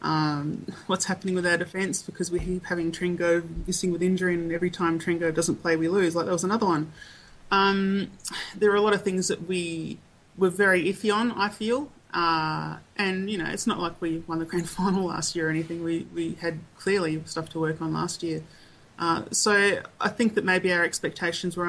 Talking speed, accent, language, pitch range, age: 215 wpm, Australian, English, 160-185 Hz, 30-49